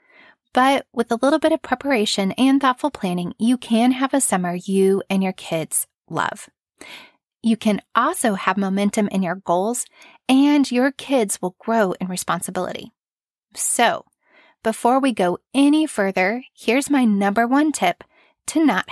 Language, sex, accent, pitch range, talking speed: English, female, American, 195-270 Hz, 150 wpm